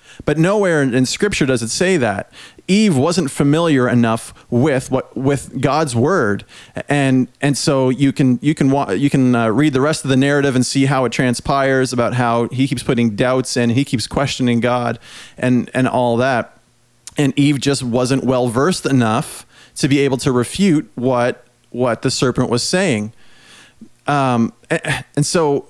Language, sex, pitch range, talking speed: English, male, 125-155 Hz, 170 wpm